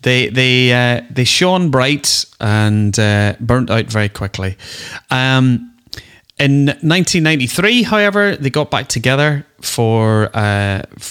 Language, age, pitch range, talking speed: English, 30-49, 105-130 Hz, 120 wpm